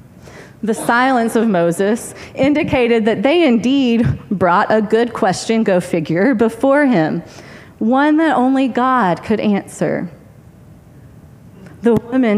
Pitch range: 215-275 Hz